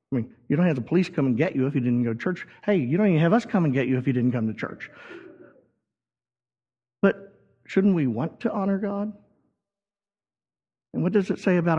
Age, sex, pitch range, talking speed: 50-69, male, 130-195 Hz, 235 wpm